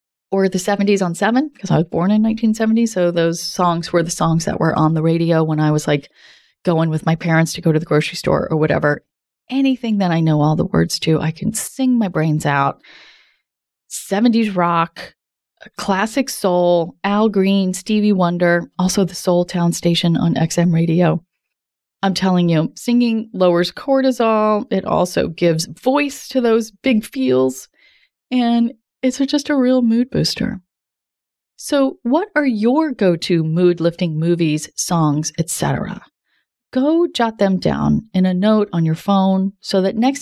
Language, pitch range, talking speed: English, 170-230 Hz, 165 wpm